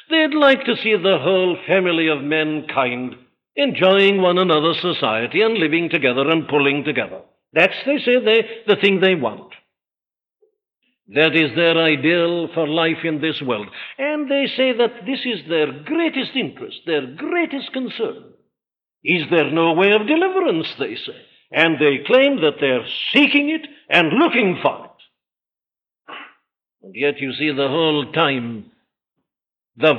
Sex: male